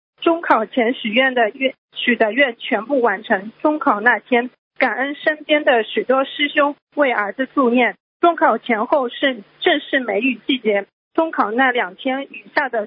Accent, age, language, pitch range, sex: native, 40-59, Chinese, 225-290 Hz, female